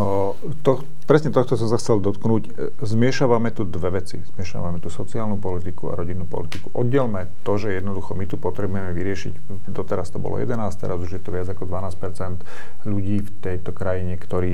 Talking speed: 175 wpm